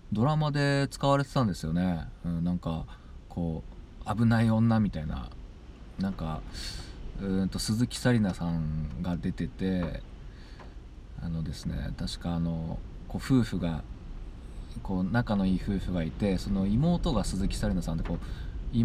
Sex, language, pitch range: male, Japanese, 85-110 Hz